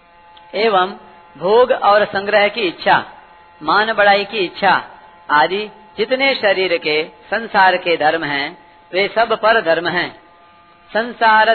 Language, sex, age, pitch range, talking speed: Hindi, female, 40-59, 175-215 Hz, 125 wpm